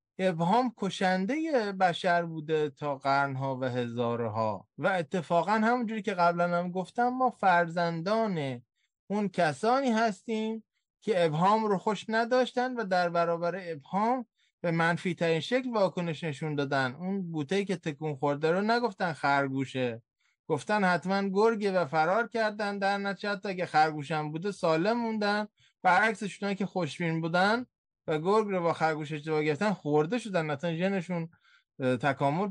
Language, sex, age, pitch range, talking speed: Persian, male, 20-39, 145-205 Hz, 140 wpm